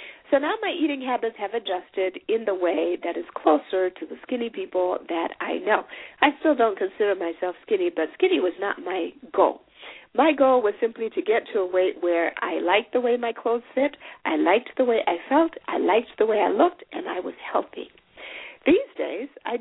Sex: female